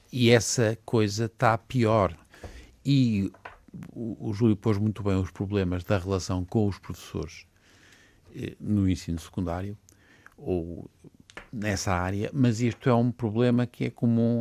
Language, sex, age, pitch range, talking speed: Portuguese, male, 50-69, 90-115 Hz, 135 wpm